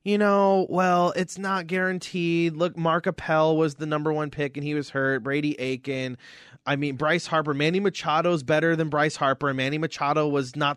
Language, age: English, 30-49